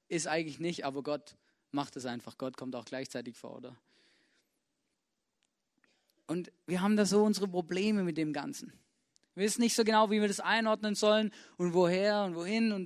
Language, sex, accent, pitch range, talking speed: German, male, German, 160-210 Hz, 180 wpm